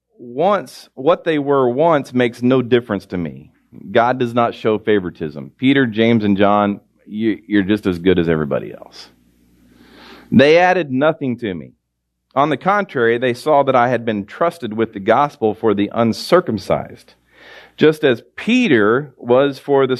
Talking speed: 160 wpm